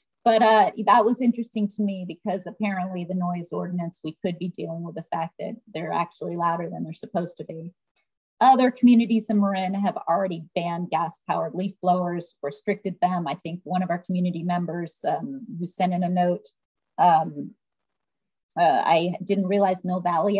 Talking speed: 180 wpm